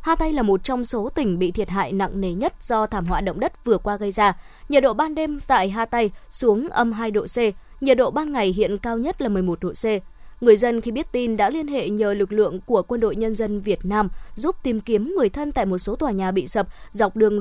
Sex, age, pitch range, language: female, 20-39, 200-245 Hz, Vietnamese